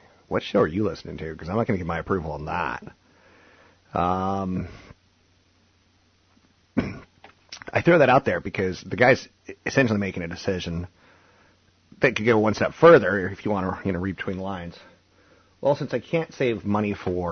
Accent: American